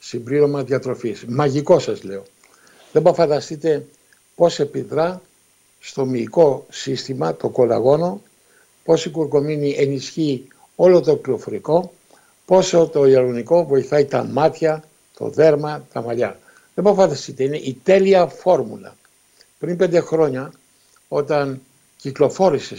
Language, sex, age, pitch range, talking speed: Greek, male, 60-79, 130-175 Hz, 115 wpm